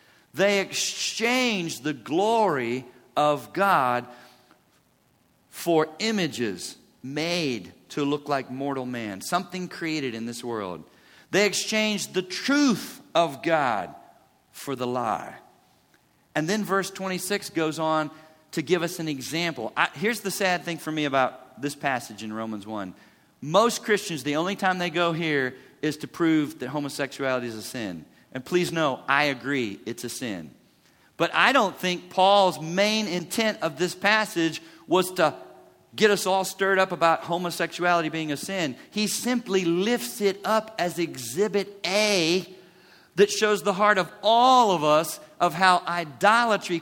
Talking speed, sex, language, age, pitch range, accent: 150 wpm, male, English, 50-69, 145-195 Hz, American